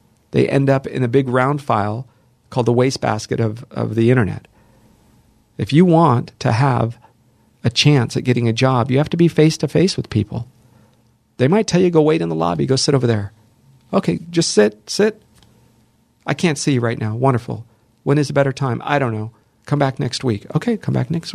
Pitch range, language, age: 115-150 Hz, English, 40-59